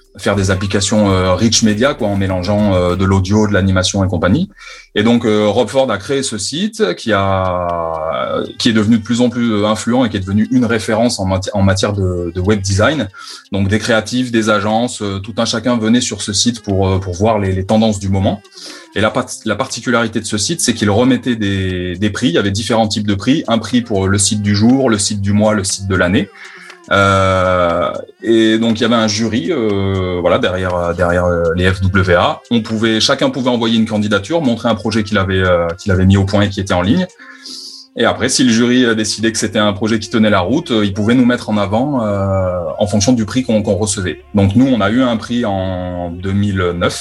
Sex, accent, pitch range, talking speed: male, French, 95-115 Hz, 225 wpm